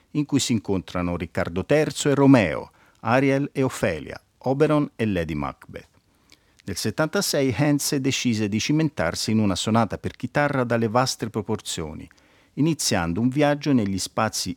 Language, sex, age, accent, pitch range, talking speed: Italian, male, 50-69, native, 95-140 Hz, 145 wpm